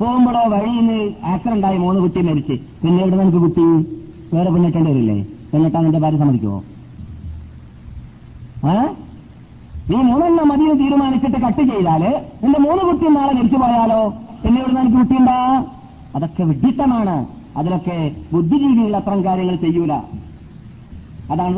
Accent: native